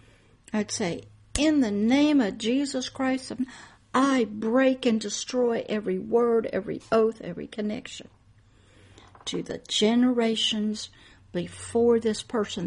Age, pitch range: 60-79, 195-250 Hz